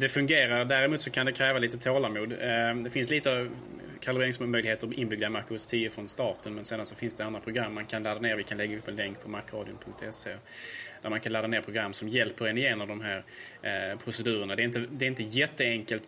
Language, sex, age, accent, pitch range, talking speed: Swedish, male, 20-39, Norwegian, 110-125 Hz, 225 wpm